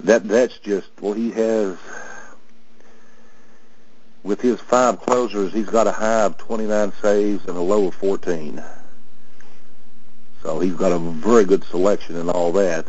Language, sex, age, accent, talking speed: English, male, 60-79, American, 155 wpm